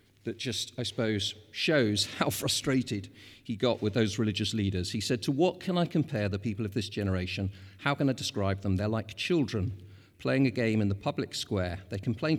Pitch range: 100-125 Hz